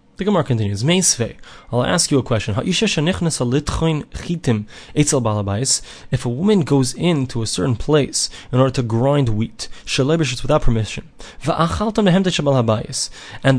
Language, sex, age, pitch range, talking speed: English, male, 30-49, 130-185 Hz, 95 wpm